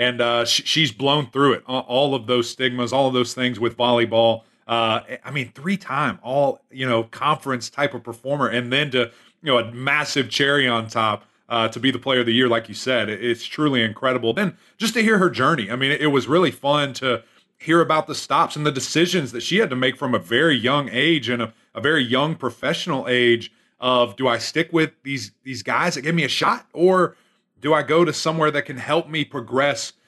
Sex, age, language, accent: male, 30-49, English, American